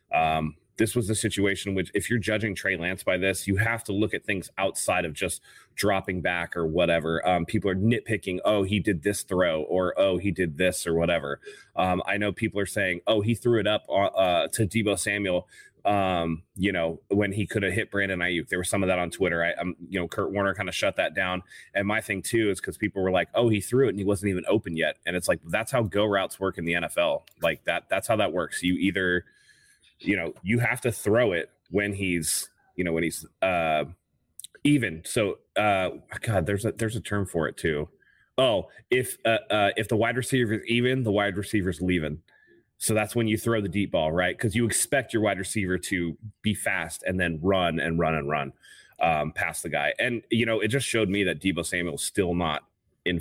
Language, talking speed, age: English, 230 wpm, 30-49